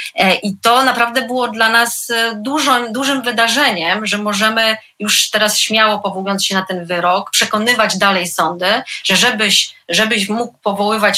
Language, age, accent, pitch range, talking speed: Polish, 30-49, native, 195-215 Hz, 145 wpm